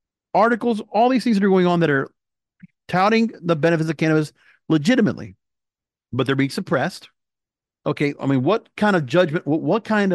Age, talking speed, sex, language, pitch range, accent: 50-69, 175 wpm, male, English, 135-195 Hz, American